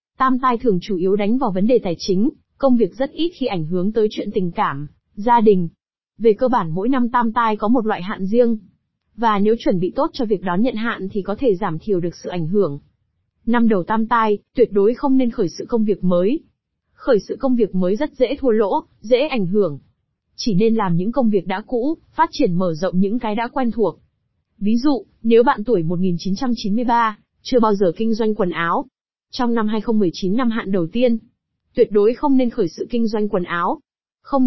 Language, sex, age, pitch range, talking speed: Vietnamese, female, 20-39, 195-250 Hz, 225 wpm